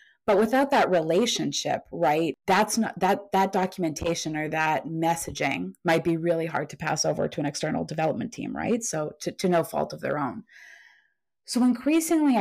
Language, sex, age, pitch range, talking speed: English, female, 20-39, 160-190 Hz, 175 wpm